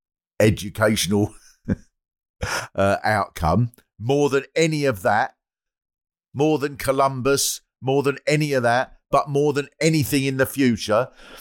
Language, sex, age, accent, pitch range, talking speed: English, male, 50-69, British, 105-135 Hz, 120 wpm